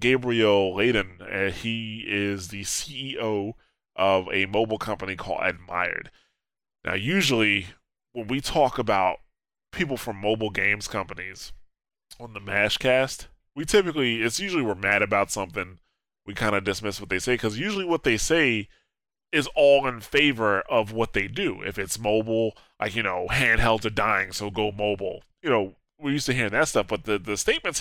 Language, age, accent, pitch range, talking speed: English, 20-39, American, 100-125 Hz, 170 wpm